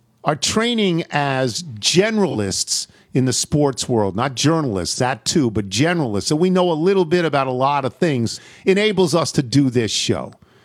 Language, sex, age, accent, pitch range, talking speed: English, male, 50-69, American, 115-165 Hz, 175 wpm